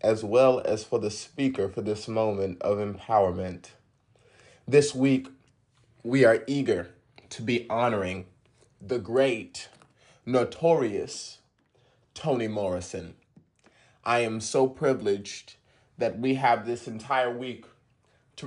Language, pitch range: English, 110-130 Hz